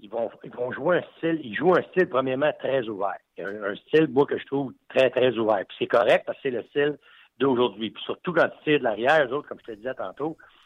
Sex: male